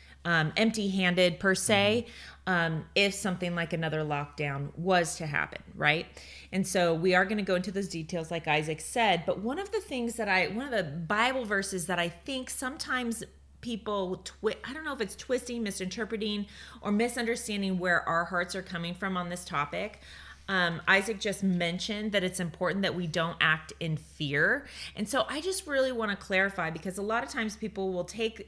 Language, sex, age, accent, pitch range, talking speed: English, female, 30-49, American, 165-205 Hz, 195 wpm